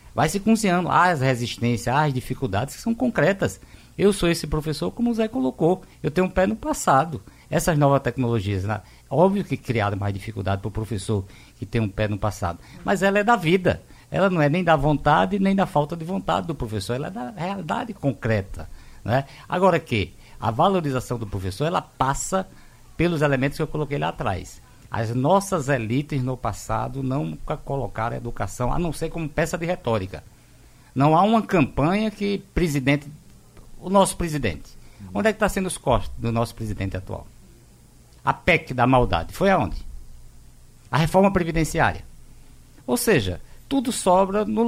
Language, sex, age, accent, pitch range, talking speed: Portuguese, male, 50-69, Brazilian, 115-185 Hz, 175 wpm